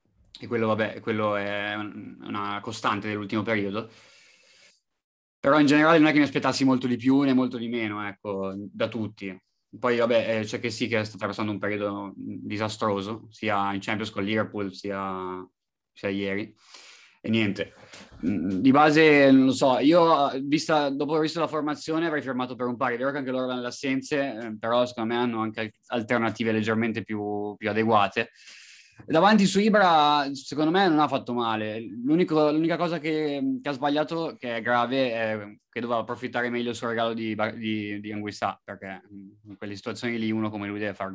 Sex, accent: male, native